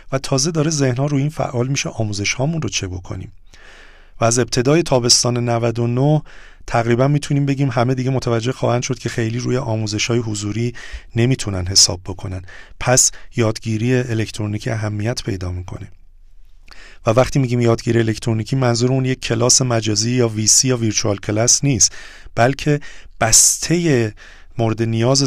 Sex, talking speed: male, 145 wpm